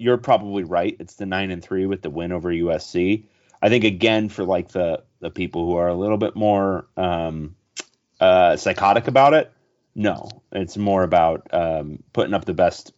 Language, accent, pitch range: English, American, 100-160 Hz